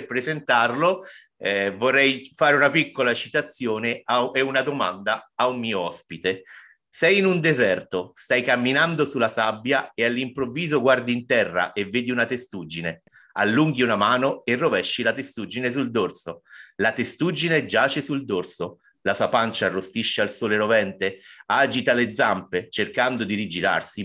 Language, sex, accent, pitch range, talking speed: Italian, male, native, 110-140 Hz, 145 wpm